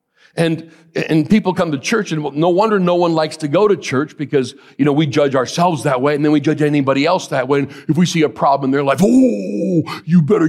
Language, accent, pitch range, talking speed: English, American, 110-165 Hz, 245 wpm